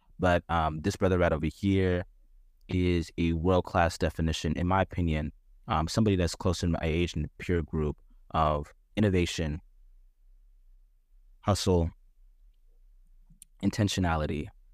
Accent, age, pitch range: American, 20-39, 80-95 Hz